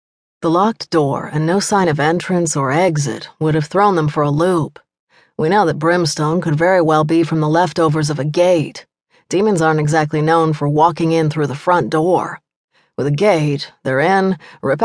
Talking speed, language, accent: 195 wpm, English, American